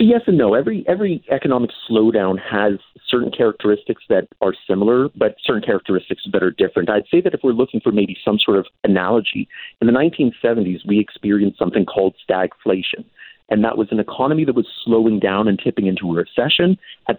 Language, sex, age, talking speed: English, male, 40-59, 190 wpm